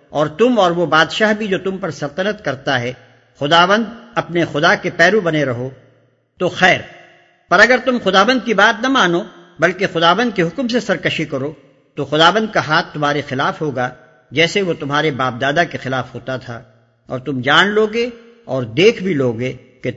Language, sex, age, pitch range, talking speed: Urdu, male, 50-69, 135-190 Hz, 185 wpm